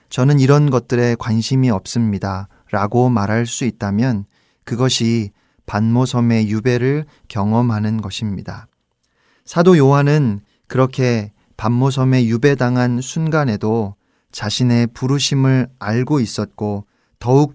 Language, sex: Korean, male